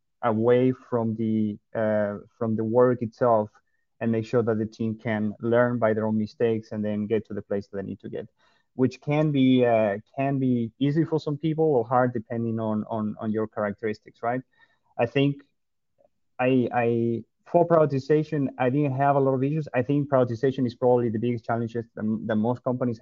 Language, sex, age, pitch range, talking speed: English, male, 30-49, 110-130 Hz, 195 wpm